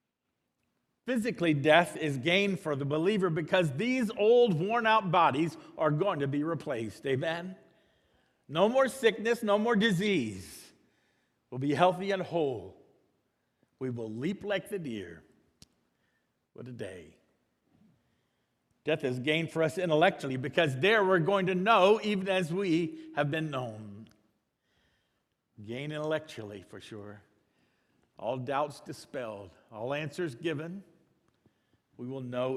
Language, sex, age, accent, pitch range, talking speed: English, male, 50-69, American, 120-175 Hz, 130 wpm